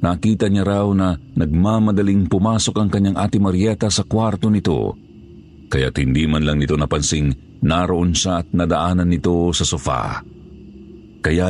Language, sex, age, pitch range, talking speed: Filipino, male, 50-69, 80-100 Hz, 140 wpm